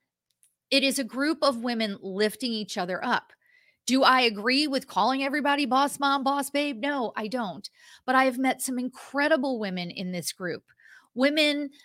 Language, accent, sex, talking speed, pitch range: English, American, female, 170 wpm, 205-275 Hz